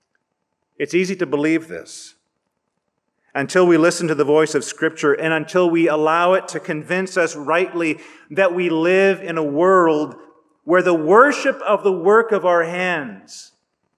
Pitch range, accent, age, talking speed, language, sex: 160-190 Hz, American, 40-59, 160 wpm, English, male